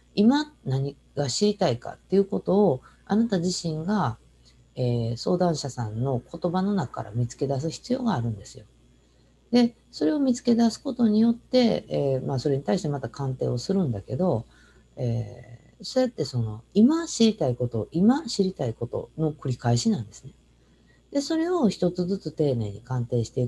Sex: female